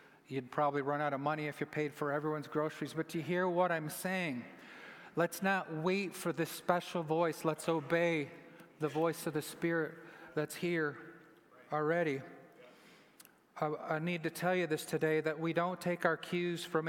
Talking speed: 180 wpm